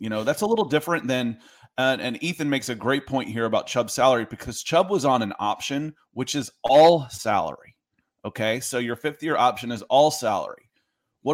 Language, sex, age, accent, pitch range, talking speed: English, male, 30-49, American, 120-145 Hz, 200 wpm